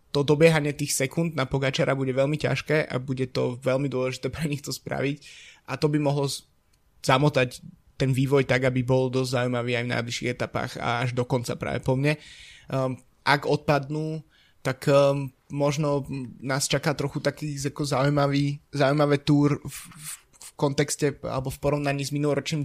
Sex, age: male, 20-39